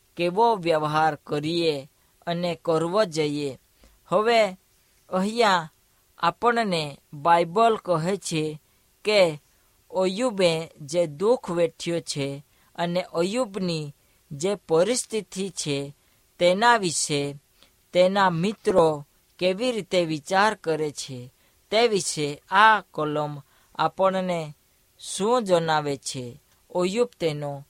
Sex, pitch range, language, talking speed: female, 145-195 Hz, Hindi, 65 wpm